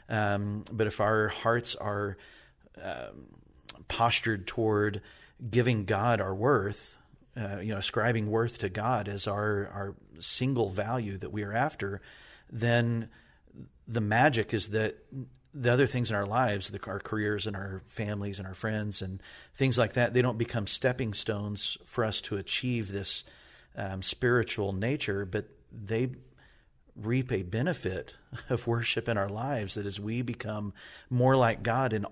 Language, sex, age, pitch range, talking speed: English, male, 40-59, 100-125 Hz, 155 wpm